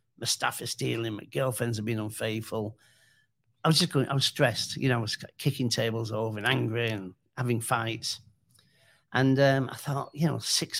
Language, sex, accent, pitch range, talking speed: English, male, British, 115-135 Hz, 195 wpm